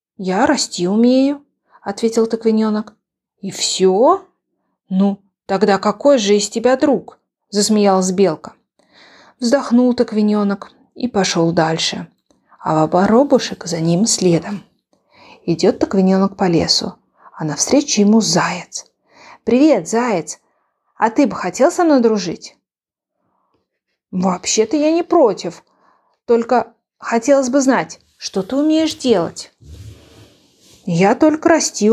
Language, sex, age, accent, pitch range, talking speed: Ukrainian, female, 30-49, native, 180-235 Hz, 115 wpm